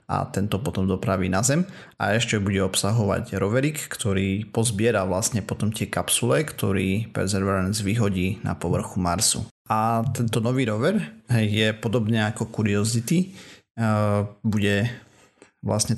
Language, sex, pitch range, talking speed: Slovak, male, 100-115 Hz, 125 wpm